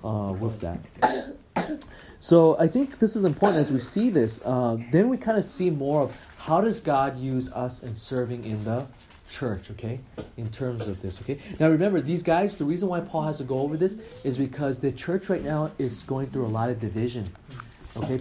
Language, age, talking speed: English, 30-49, 210 wpm